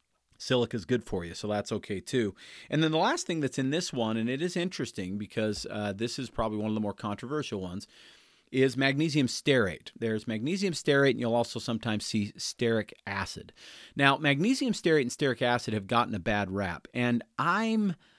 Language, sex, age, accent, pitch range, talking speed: English, male, 40-59, American, 105-140 Hz, 195 wpm